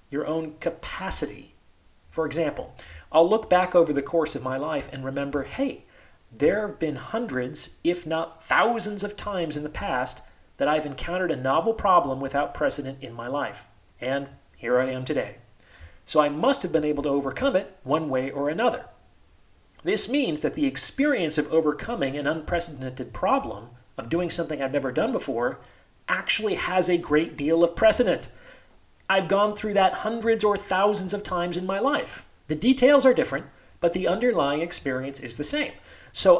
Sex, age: male, 40-59